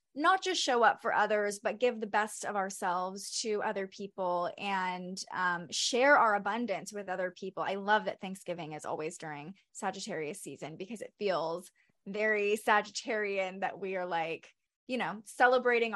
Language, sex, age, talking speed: English, female, 20-39, 165 wpm